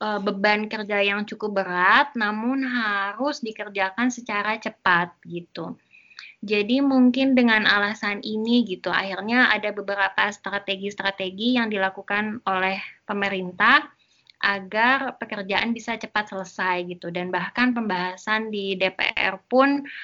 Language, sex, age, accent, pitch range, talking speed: Indonesian, female, 20-39, native, 190-220 Hz, 110 wpm